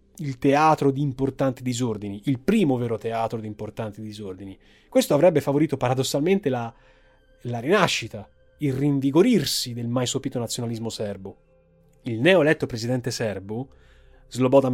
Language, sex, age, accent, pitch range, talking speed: Italian, male, 30-49, native, 110-150 Hz, 125 wpm